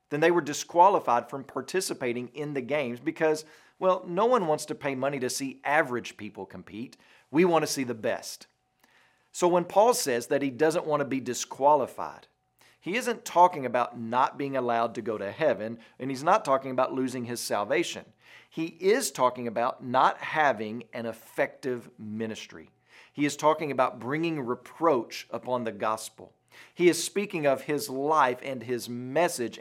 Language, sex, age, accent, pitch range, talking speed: English, male, 40-59, American, 125-160 Hz, 170 wpm